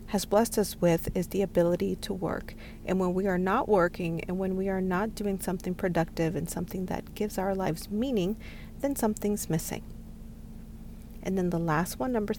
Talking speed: 190 wpm